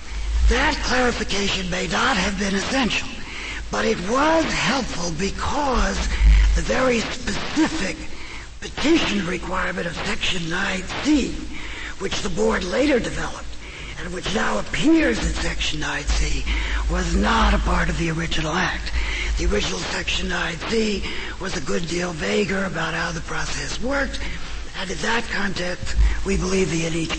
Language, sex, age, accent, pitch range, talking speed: English, male, 50-69, American, 170-240 Hz, 140 wpm